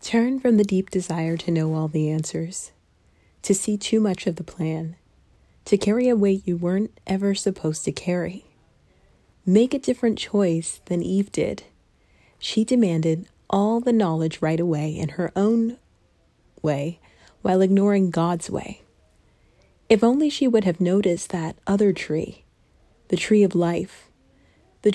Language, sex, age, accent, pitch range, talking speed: English, female, 30-49, American, 170-220 Hz, 150 wpm